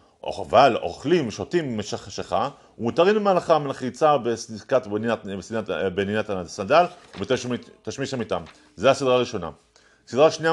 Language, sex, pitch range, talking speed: Hebrew, male, 110-155 Hz, 115 wpm